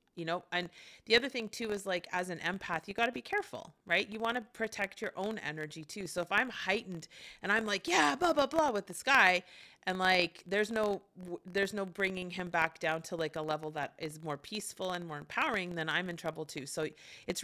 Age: 30-49